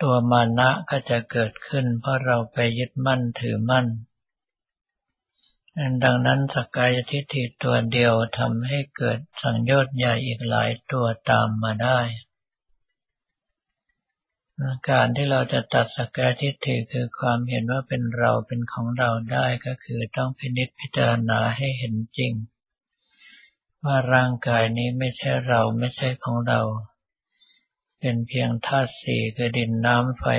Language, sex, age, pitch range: Thai, male, 60-79, 115-130 Hz